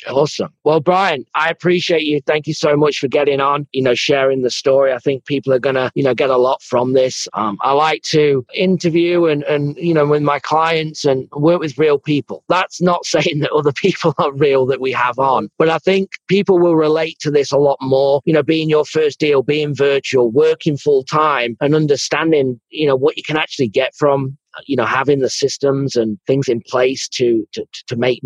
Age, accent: 40-59, British